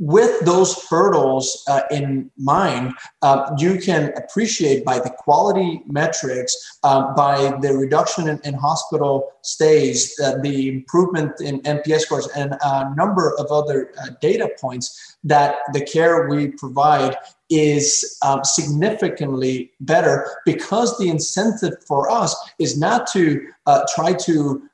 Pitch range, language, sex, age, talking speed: 140-175 Hz, English, male, 30-49, 140 wpm